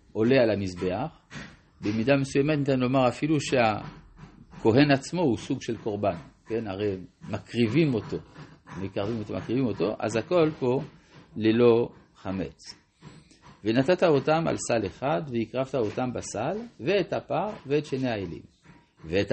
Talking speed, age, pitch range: 125 wpm, 50-69, 110-155 Hz